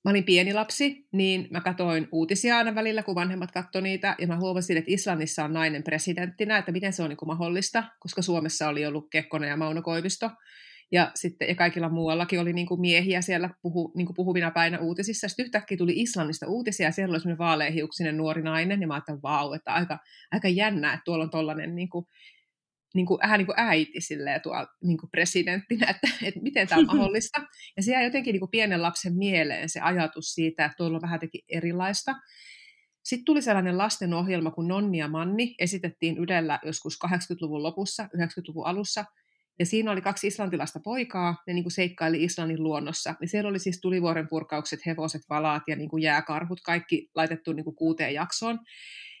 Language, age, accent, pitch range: Finnish, 30-49, native, 160-195 Hz